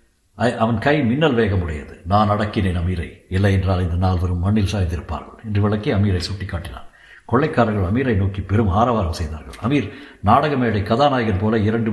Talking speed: 140 wpm